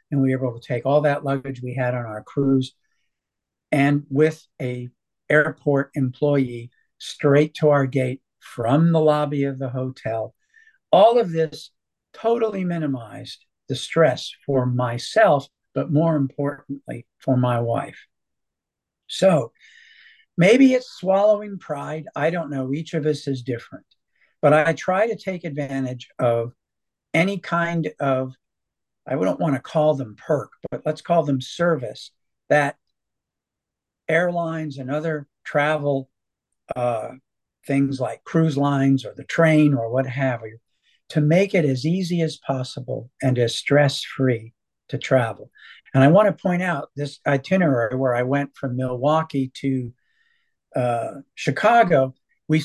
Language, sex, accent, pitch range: English, male, American, 130-165 Hz